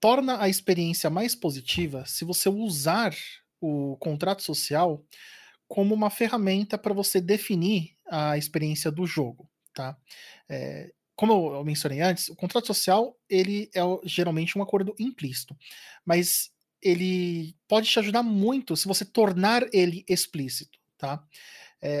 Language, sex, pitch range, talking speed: Portuguese, male, 155-200 Hz, 130 wpm